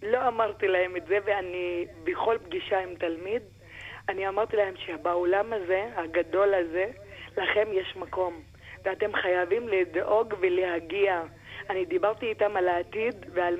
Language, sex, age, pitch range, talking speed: Hebrew, female, 20-39, 185-245 Hz, 130 wpm